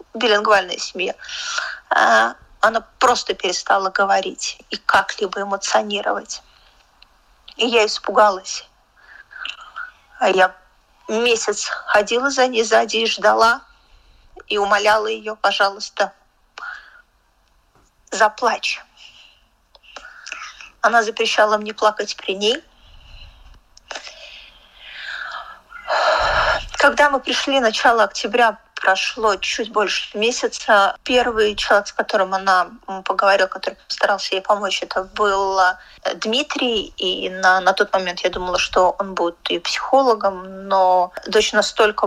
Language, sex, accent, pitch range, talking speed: Russian, female, native, 195-240 Hz, 100 wpm